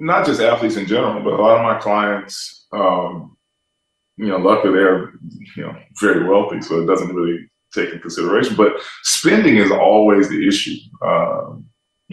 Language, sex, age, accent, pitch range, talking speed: English, male, 20-39, American, 95-110 Hz, 170 wpm